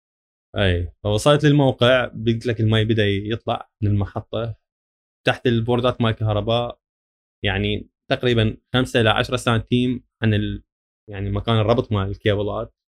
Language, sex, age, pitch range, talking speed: Arabic, male, 20-39, 100-115 Hz, 120 wpm